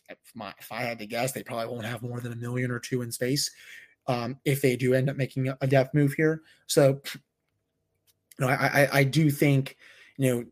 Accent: American